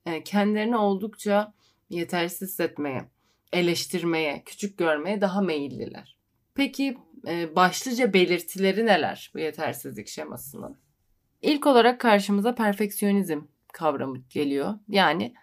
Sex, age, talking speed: female, 30-49, 90 wpm